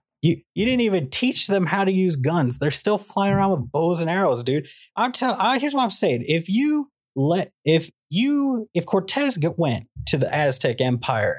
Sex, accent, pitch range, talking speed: male, American, 130-180 Hz, 200 wpm